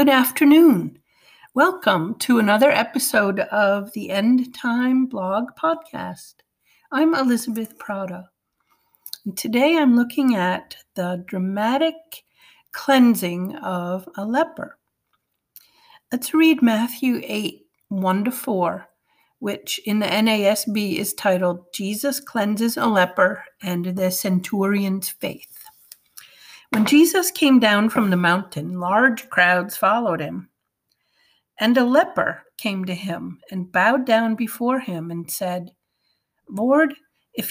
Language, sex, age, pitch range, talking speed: English, female, 50-69, 185-275 Hz, 110 wpm